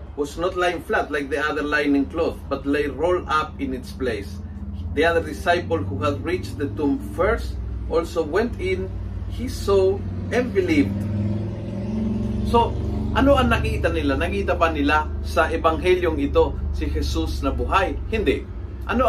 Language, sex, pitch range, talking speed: Filipino, male, 105-165 Hz, 155 wpm